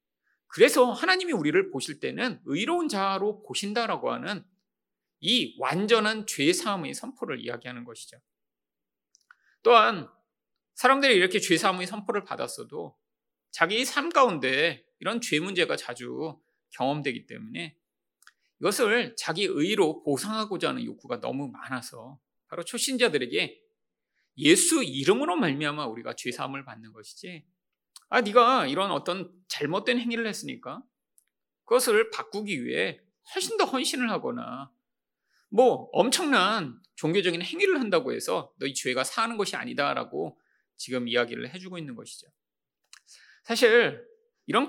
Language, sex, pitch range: Korean, male, 165-280 Hz